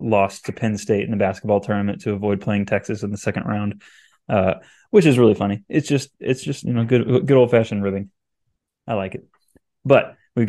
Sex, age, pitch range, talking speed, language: male, 20-39, 105-125 Hz, 210 wpm, English